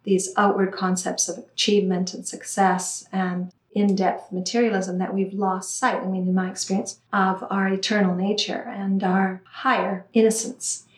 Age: 40-59